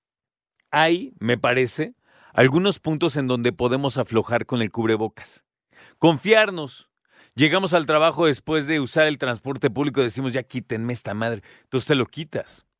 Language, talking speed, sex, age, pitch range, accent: Spanish, 150 wpm, male, 40-59, 120-160 Hz, Mexican